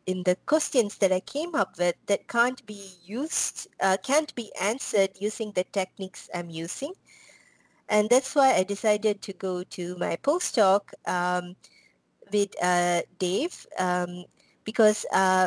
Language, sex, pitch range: Spanish, female, 180-230 Hz